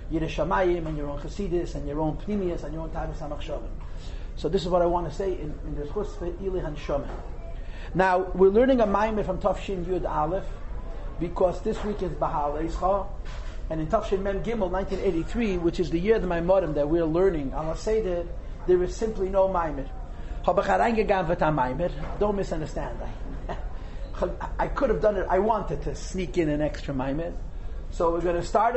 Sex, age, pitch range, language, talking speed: male, 40-59, 150-200 Hz, English, 190 wpm